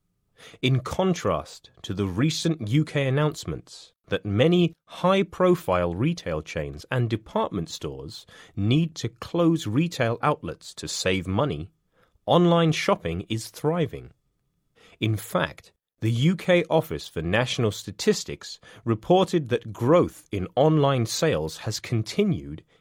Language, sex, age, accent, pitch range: Chinese, male, 30-49, British, 100-160 Hz